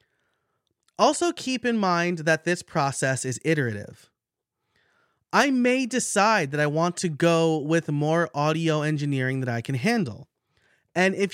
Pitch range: 125-175 Hz